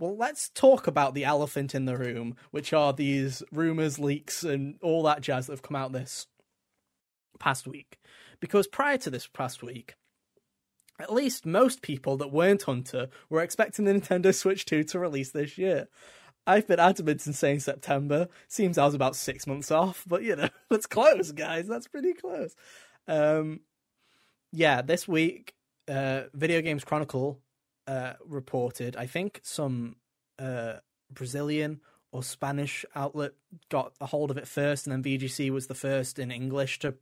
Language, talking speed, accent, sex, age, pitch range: English, 165 wpm, British, male, 20-39, 135-165 Hz